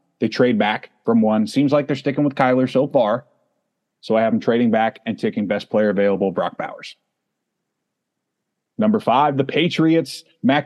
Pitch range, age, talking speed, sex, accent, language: 115-145 Hz, 30-49, 175 wpm, male, American, English